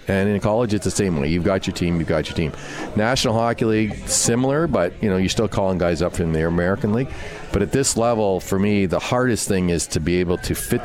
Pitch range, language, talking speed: 85-110 Hz, English, 255 wpm